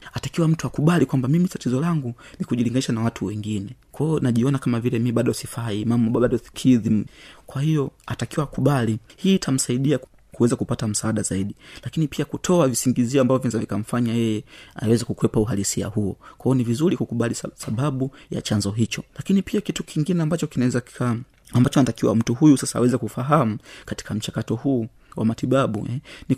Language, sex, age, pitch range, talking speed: Swahili, male, 30-49, 115-145 Hz, 170 wpm